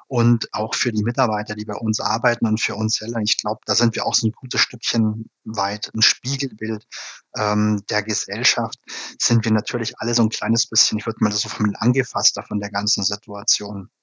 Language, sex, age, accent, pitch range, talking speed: German, male, 30-49, German, 110-120 Hz, 205 wpm